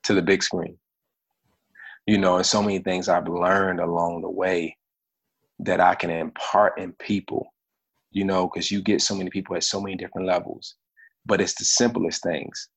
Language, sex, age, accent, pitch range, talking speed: English, male, 30-49, American, 95-115 Hz, 185 wpm